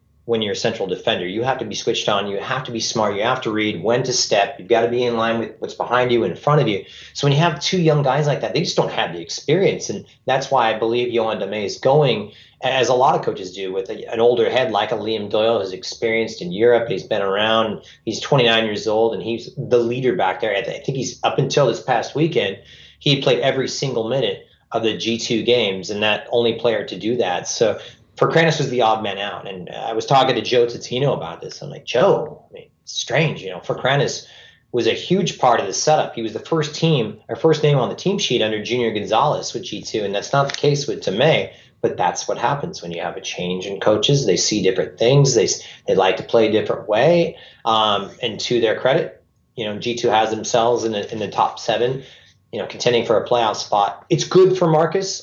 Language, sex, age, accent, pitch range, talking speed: English, male, 30-49, American, 110-155 Hz, 245 wpm